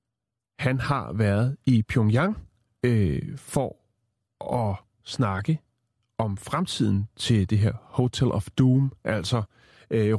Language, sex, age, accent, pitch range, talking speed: Danish, male, 30-49, native, 105-130 Hz, 110 wpm